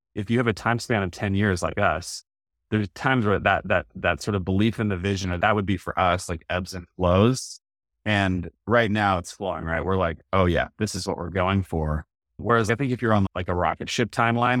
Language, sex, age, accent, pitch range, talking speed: English, male, 30-49, American, 85-100 Hz, 245 wpm